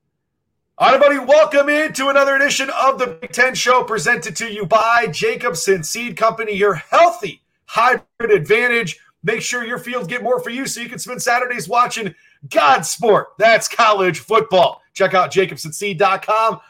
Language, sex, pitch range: English, male, 195-245 Hz